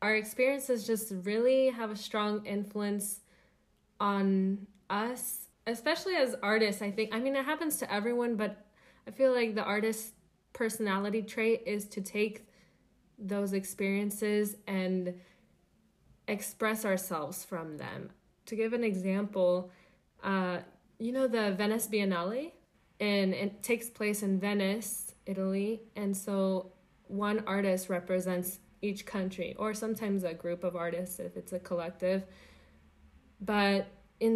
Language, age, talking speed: English, 20-39, 130 wpm